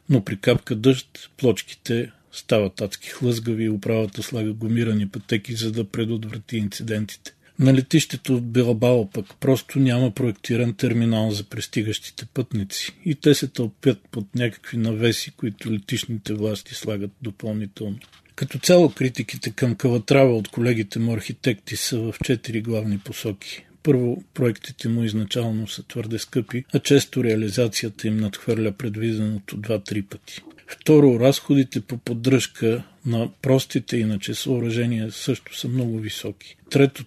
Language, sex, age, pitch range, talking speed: Bulgarian, male, 40-59, 110-130 Hz, 140 wpm